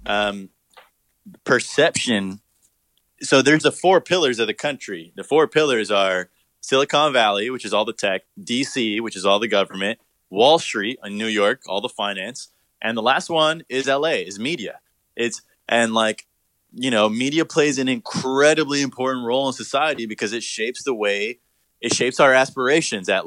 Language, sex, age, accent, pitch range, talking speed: English, male, 20-39, American, 105-135 Hz, 170 wpm